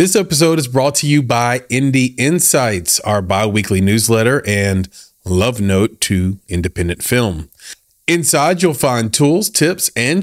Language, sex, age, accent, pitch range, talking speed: English, male, 40-59, American, 100-145 Hz, 140 wpm